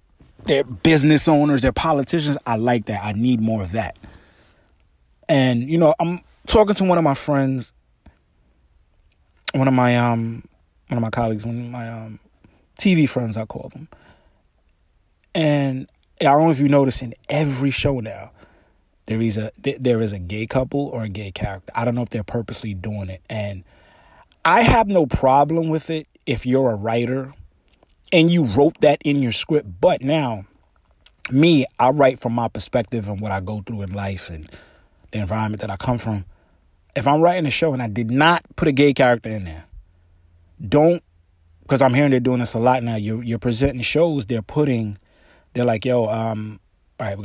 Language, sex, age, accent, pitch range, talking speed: English, male, 30-49, American, 95-135 Hz, 190 wpm